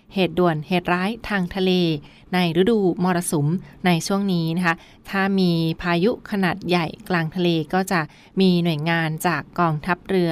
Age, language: 20-39, Thai